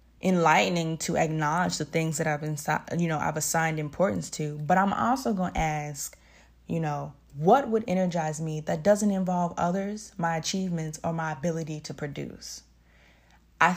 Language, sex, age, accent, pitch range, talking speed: English, female, 20-39, American, 155-185 Hz, 165 wpm